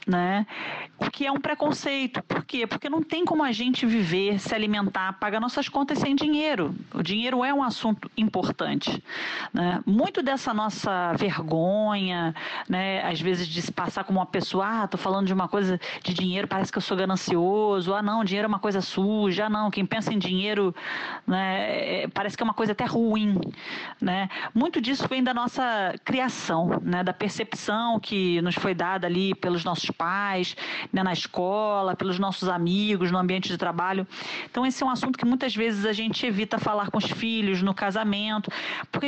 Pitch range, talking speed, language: 185-230 Hz, 185 wpm, Portuguese